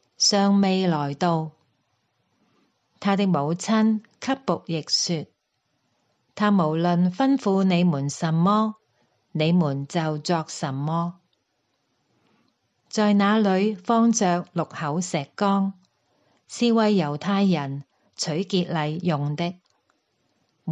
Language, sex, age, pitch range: Chinese, female, 40-59, 155-200 Hz